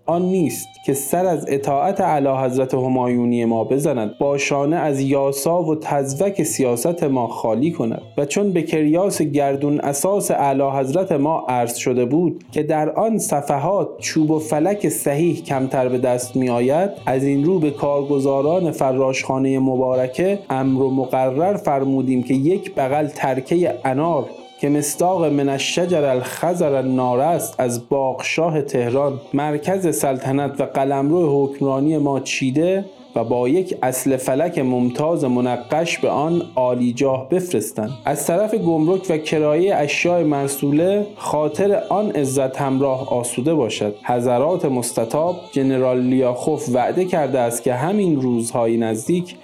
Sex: male